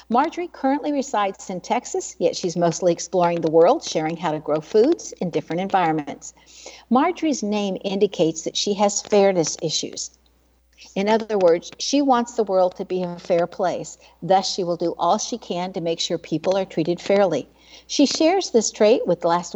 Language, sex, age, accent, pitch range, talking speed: English, female, 60-79, American, 170-235 Hz, 185 wpm